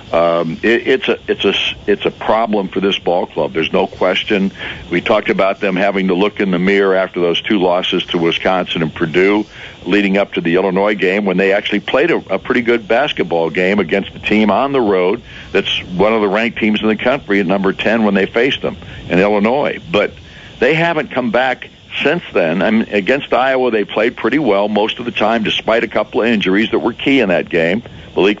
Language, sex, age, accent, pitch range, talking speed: English, male, 60-79, American, 95-105 Hz, 220 wpm